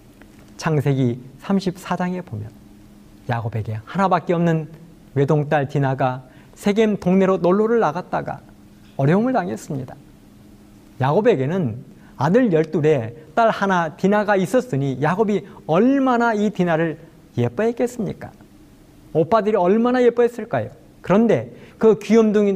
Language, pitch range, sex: Korean, 135-210 Hz, male